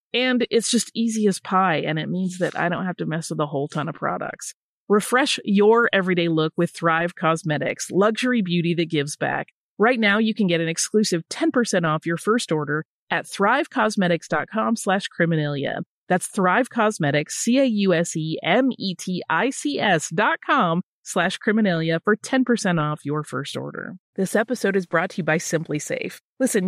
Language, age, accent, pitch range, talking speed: English, 30-49, American, 160-235 Hz, 165 wpm